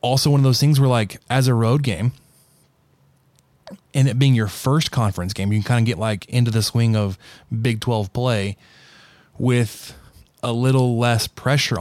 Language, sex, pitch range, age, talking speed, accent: English, male, 115-135 Hz, 20-39, 185 wpm, American